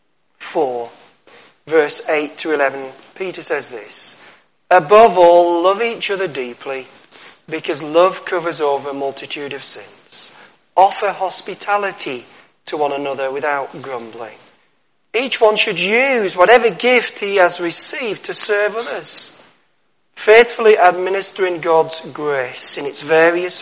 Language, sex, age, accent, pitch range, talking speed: English, male, 40-59, British, 145-210 Hz, 120 wpm